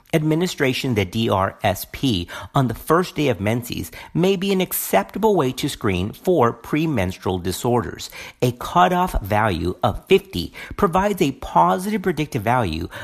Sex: male